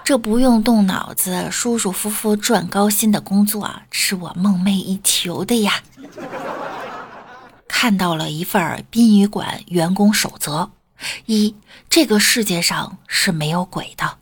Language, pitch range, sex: Chinese, 175-230 Hz, female